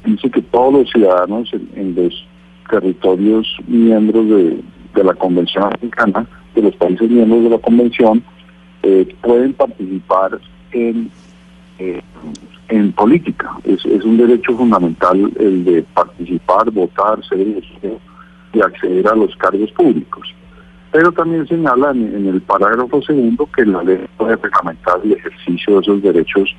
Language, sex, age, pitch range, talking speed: Spanish, male, 50-69, 95-125 Hz, 140 wpm